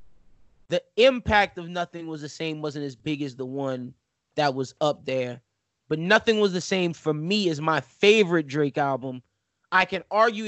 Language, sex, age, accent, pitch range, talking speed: English, male, 20-39, American, 140-180 Hz, 185 wpm